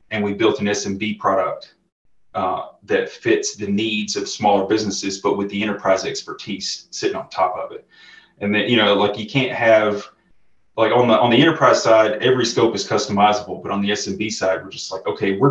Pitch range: 100-120 Hz